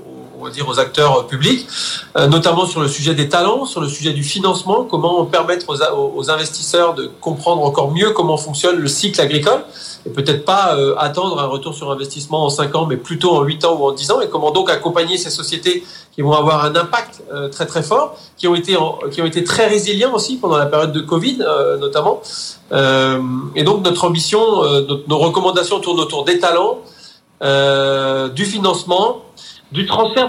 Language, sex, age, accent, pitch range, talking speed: French, male, 40-59, French, 150-200 Hz, 180 wpm